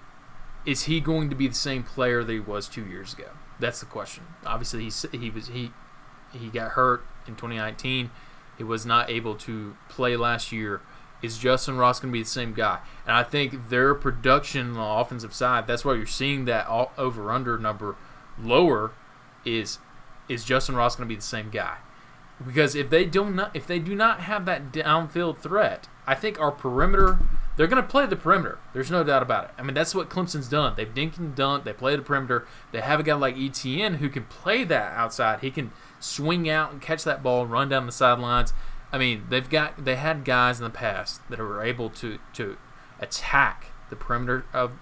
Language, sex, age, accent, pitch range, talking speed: English, male, 20-39, American, 115-150 Hz, 210 wpm